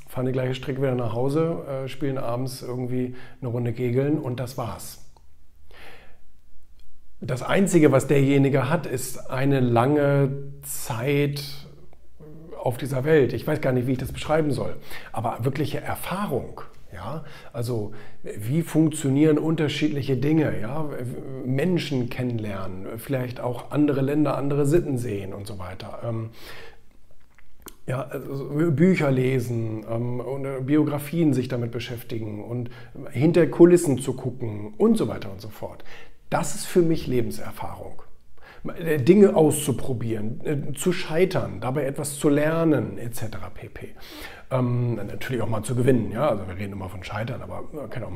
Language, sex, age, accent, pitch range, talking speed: German, male, 40-59, German, 115-150 Hz, 135 wpm